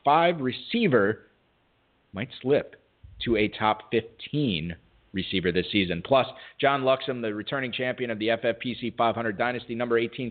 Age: 40-59